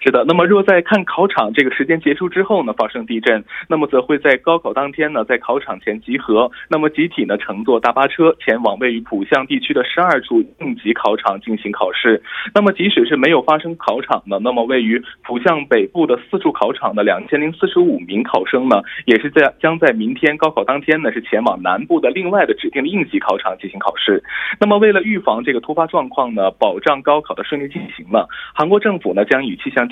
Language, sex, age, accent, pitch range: Korean, male, 20-39, Chinese, 150-215 Hz